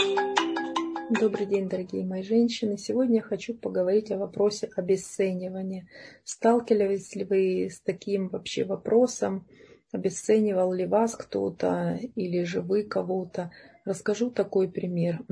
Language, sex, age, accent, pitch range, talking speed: Russian, female, 30-49, native, 175-220 Hz, 120 wpm